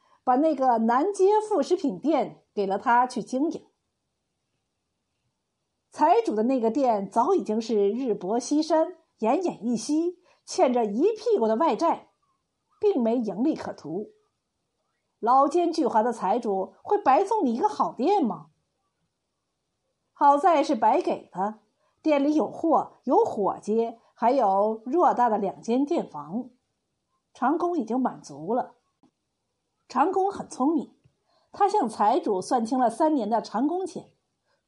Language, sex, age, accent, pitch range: Chinese, female, 50-69, native, 230-350 Hz